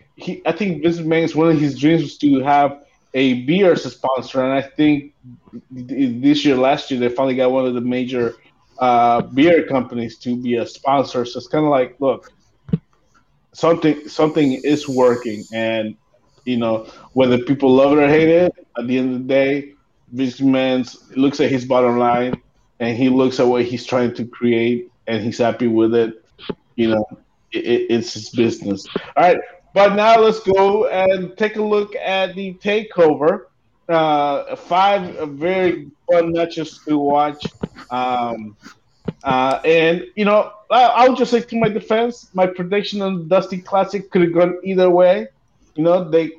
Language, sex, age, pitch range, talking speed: English, male, 20-39, 125-180 Hz, 175 wpm